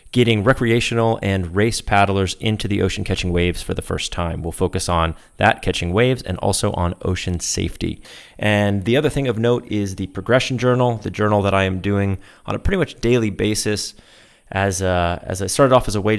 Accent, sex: American, male